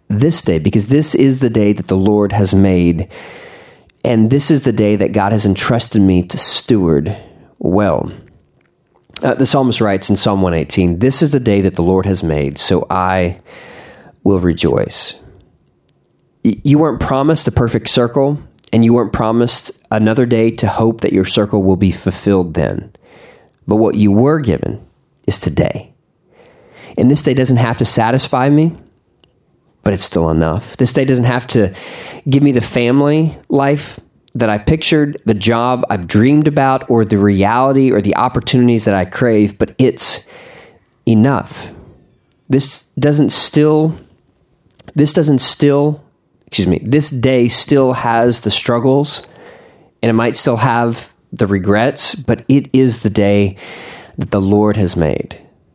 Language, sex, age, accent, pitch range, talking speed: English, male, 30-49, American, 100-135 Hz, 155 wpm